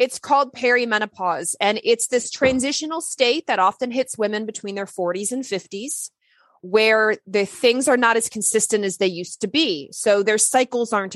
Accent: American